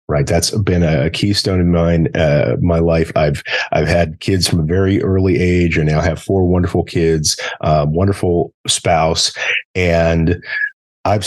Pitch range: 80-95 Hz